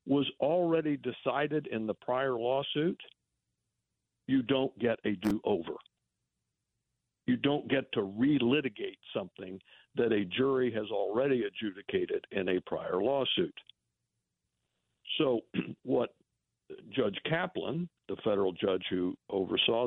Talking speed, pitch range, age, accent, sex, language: 110 wpm, 105-135 Hz, 60-79, American, male, English